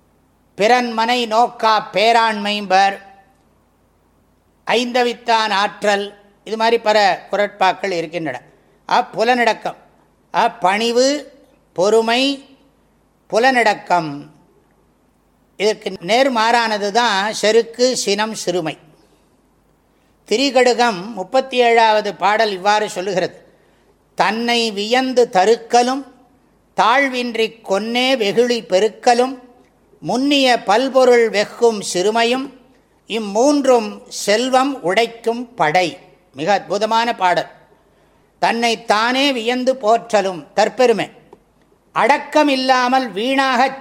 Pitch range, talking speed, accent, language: 205-245 Hz, 65 wpm, Indian, English